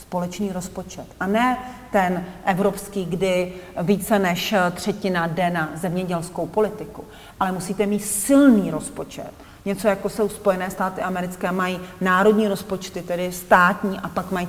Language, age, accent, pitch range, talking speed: Czech, 40-59, native, 180-215 Hz, 135 wpm